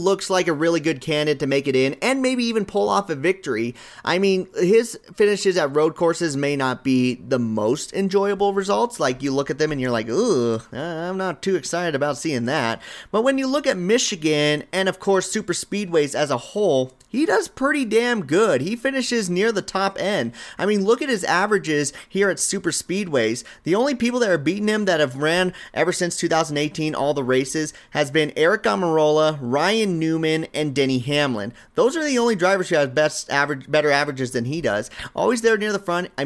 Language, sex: English, male